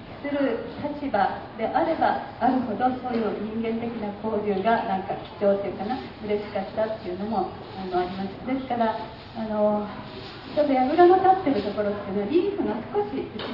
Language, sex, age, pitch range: Japanese, female, 40-59, 205-275 Hz